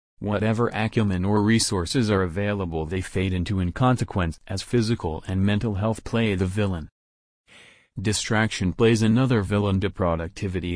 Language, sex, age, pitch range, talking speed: English, male, 40-59, 95-115 Hz, 140 wpm